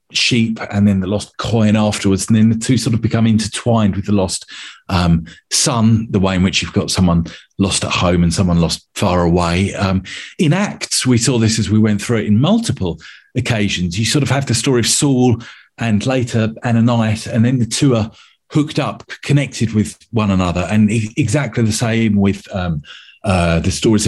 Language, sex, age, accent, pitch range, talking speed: English, male, 40-59, British, 100-130 Hz, 200 wpm